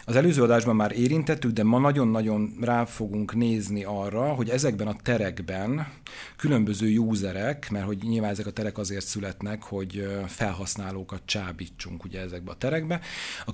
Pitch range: 105-125 Hz